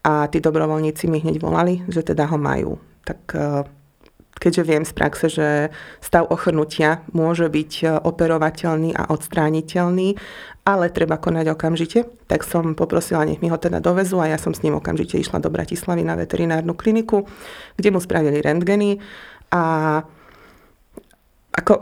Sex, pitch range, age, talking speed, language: female, 155-175 Hz, 30-49, 145 wpm, Slovak